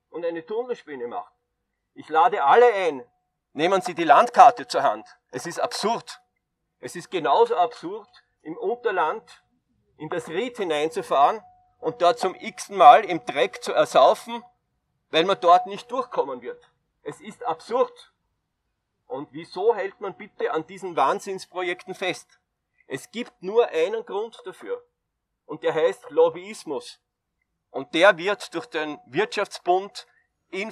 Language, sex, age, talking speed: German, male, 40-59, 135 wpm